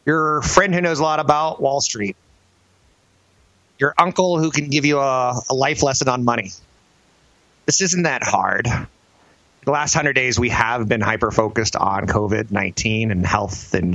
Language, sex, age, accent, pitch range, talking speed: English, male, 30-49, American, 100-135 Hz, 165 wpm